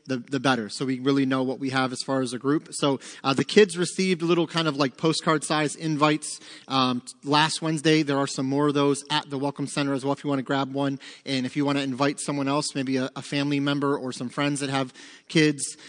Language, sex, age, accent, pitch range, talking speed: English, male, 30-49, American, 135-155 Hz, 260 wpm